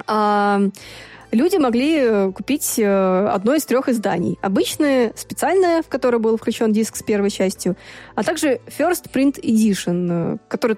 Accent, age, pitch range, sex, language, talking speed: native, 20-39, 200-250 Hz, female, Russian, 135 wpm